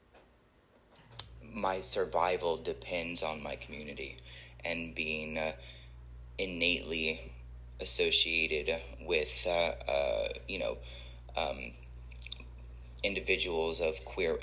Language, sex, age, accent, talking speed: English, male, 20-39, American, 85 wpm